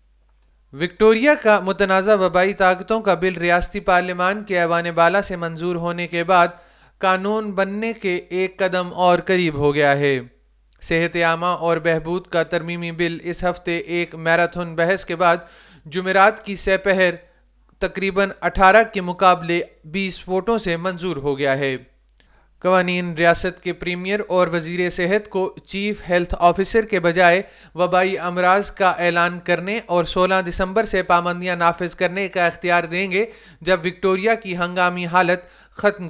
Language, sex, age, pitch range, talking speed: Urdu, male, 30-49, 170-190 Hz, 150 wpm